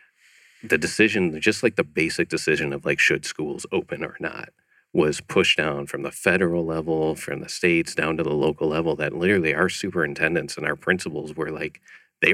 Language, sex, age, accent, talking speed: English, male, 40-59, American, 190 wpm